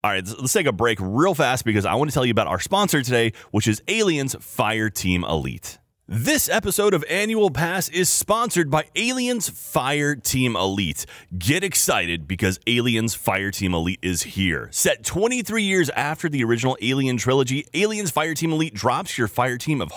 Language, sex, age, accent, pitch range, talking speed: English, male, 30-49, American, 100-170 Hz, 185 wpm